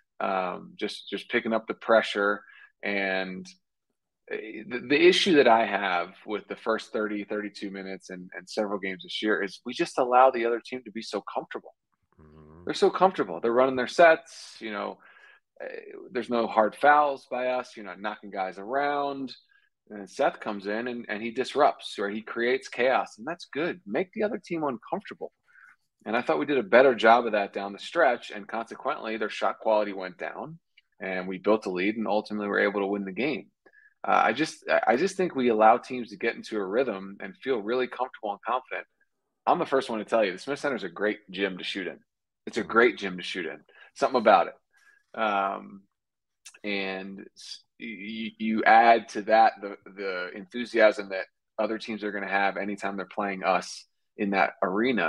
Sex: male